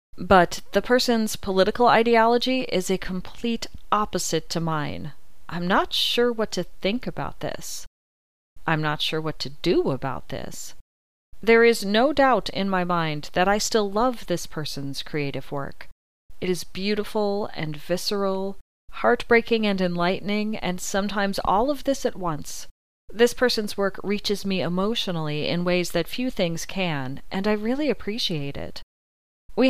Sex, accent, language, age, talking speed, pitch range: female, American, English, 40-59, 150 wpm, 150-210 Hz